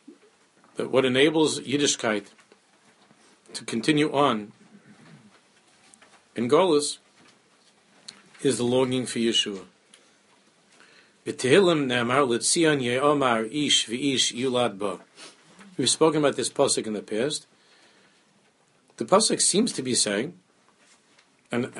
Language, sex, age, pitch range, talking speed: English, male, 50-69, 115-150 Hz, 75 wpm